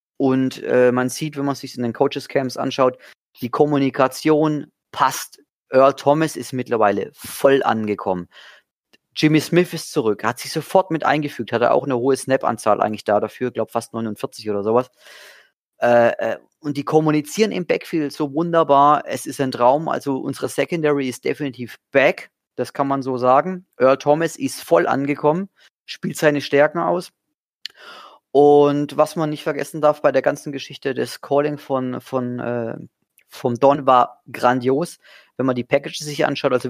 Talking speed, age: 165 wpm, 30-49